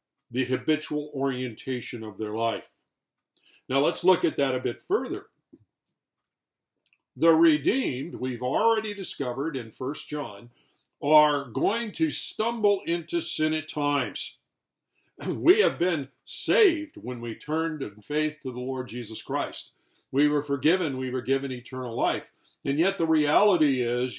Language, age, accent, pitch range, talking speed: English, 50-69, American, 130-175 Hz, 140 wpm